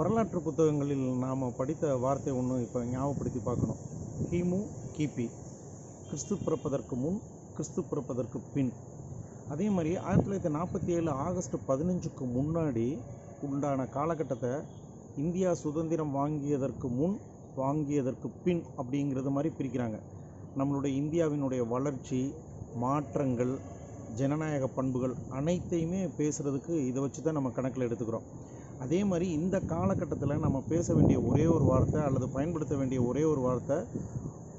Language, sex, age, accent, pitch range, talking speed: Tamil, male, 40-59, native, 130-160 Hz, 115 wpm